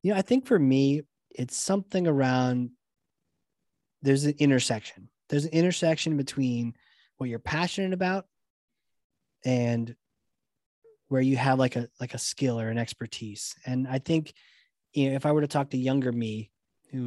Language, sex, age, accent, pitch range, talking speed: English, male, 20-39, American, 120-140 Hz, 160 wpm